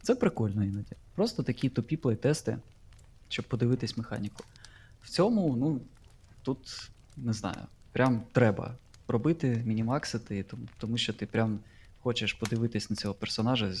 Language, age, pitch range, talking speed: Ukrainian, 20-39, 110-130 Hz, 125 wpm